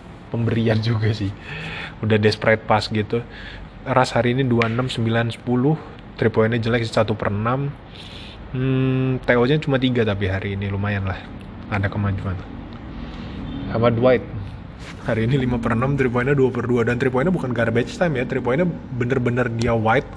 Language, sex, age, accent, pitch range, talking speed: Indonesian, male, 20-39, native, 110-130 Hz, 145 wpm